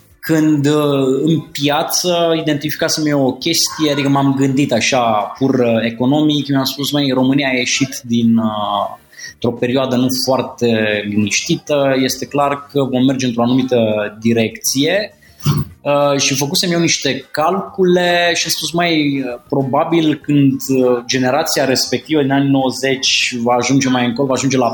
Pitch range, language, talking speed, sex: 120-150 Hz, Romanian, 140 wpm, male